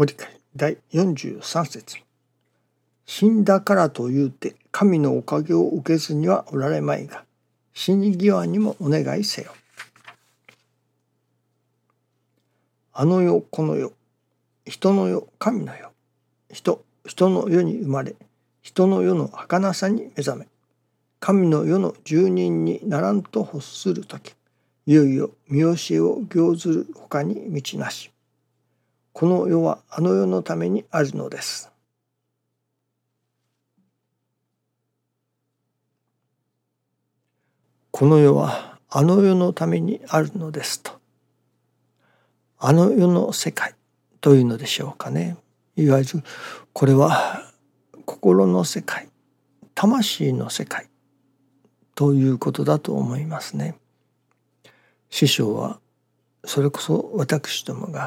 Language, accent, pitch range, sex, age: Japanese, native, 130-180 Hz, male, 60-79